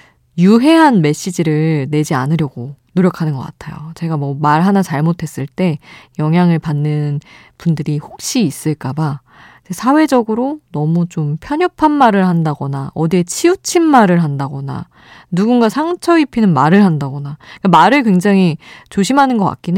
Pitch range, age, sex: 150-220 Hz, 20-39, female